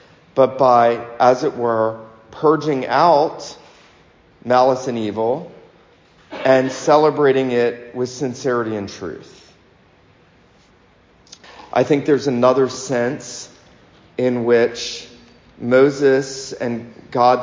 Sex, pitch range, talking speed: male, 115-130 Hz, 95 wpm